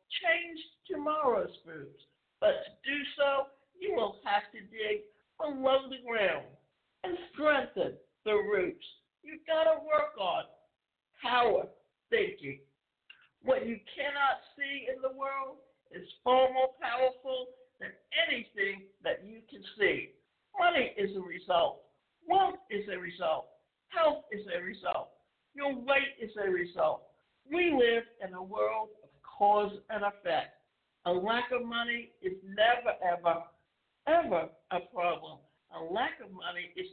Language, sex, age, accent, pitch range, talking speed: English, male, 60-79, American, 205-305 Hz, 135 wpm